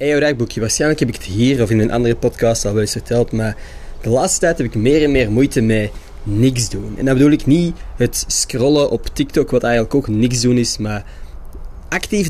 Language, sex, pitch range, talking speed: Dutch, male, 105-145 Hz, 220 wpm